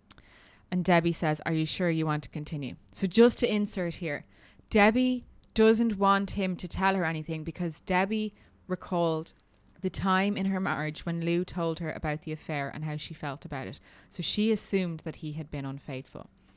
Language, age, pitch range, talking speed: English, 20-39, 160-190 Hz, 190 wpm